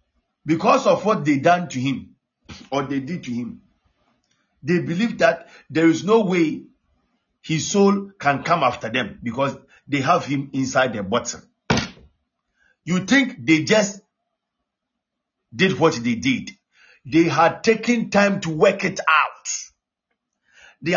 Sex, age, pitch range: male, 50-69, 155-220 Hz